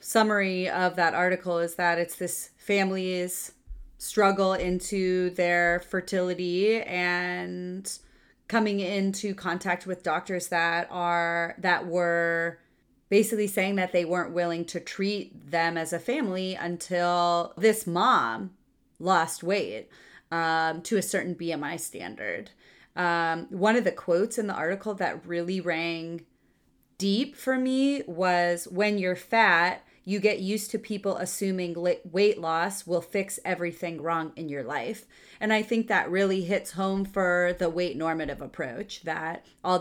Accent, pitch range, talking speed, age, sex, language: American, 170-195 Hz, 140 wpm, 30-49, female, English